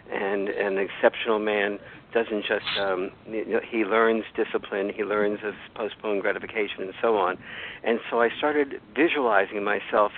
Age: 50-69